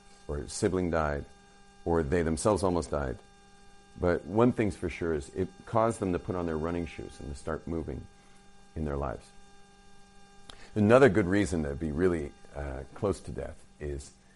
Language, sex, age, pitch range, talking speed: English, male, 50-69, 80-115 Hz, 175 wpm